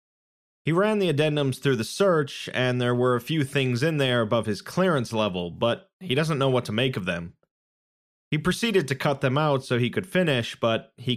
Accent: American